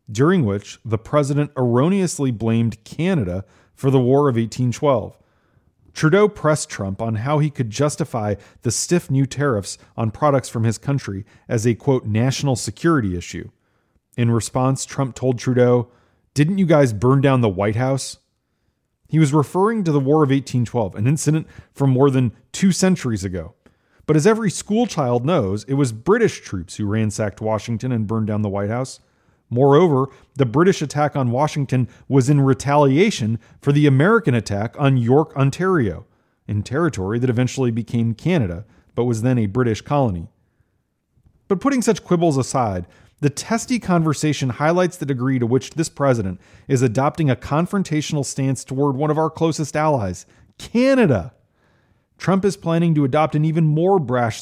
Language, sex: English, male